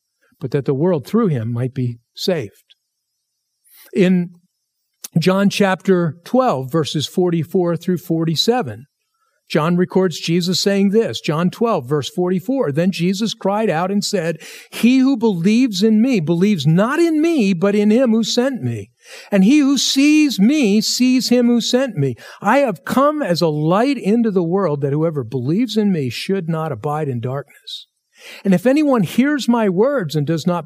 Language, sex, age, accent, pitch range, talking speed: English, male, 50-69, American, 160-235 Hz, 165 wpm